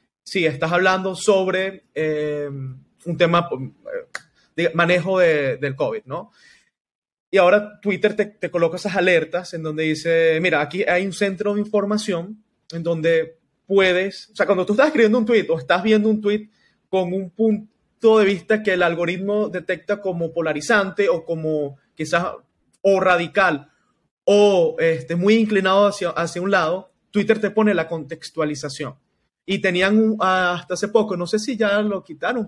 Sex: male